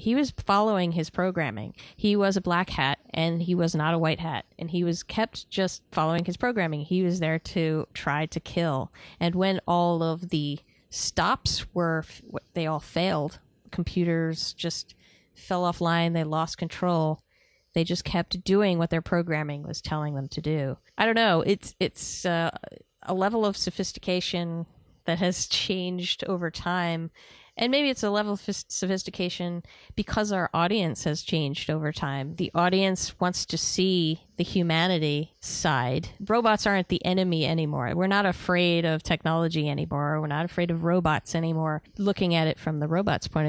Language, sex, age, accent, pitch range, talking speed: English, female, 30-49, American, 155-185 Hz, 165 wpm